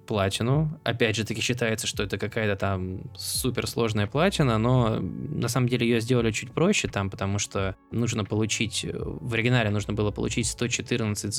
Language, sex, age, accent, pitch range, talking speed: Russian, male, 20-39, native, 105-130 Hz, 165 wpm